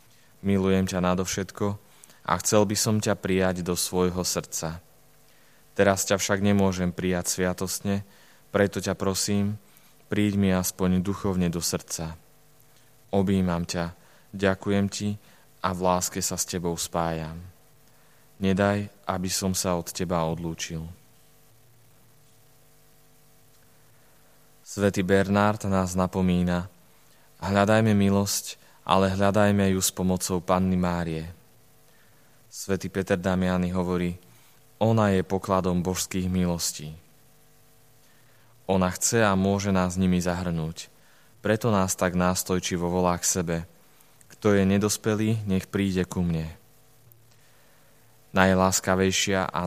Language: Slovak